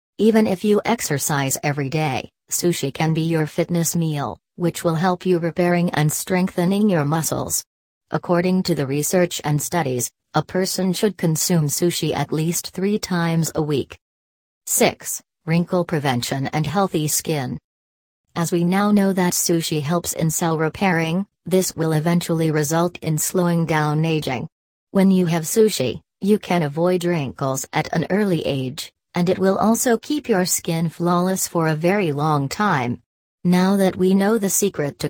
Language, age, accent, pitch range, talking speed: English, 40-59, American, 150-180 Hz, 160 wpm